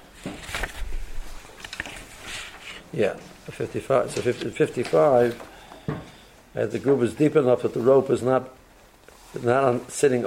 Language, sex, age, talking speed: English, male, 50-69, 100 wpm